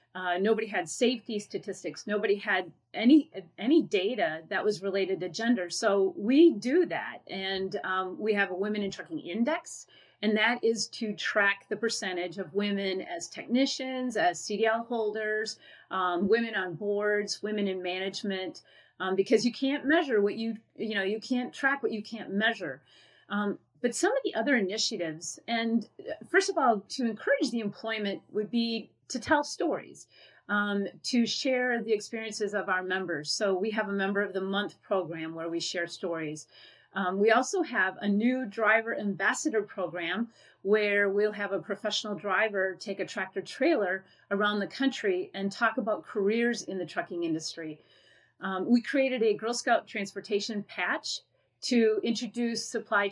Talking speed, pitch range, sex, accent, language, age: 165 wpm, 195-230 Hz, female, American, English, 30-49